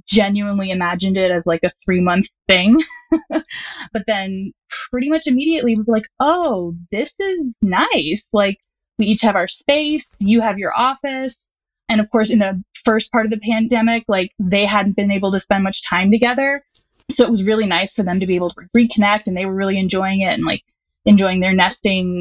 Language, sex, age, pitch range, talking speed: English, female, 10-29, 195-235 Hz, 195 wpm